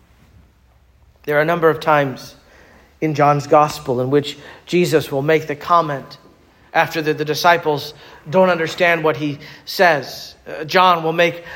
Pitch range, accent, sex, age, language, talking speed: 140-180 Hz, American, male, 40-59, English, 150 wpm